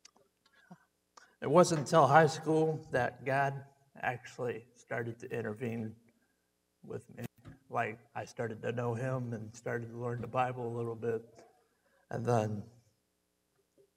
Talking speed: 130 wpm